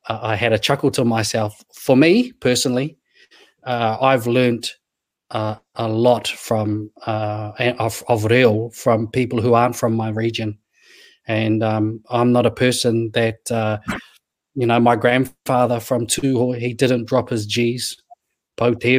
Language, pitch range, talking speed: English, 115-130 Hz, 150 wpm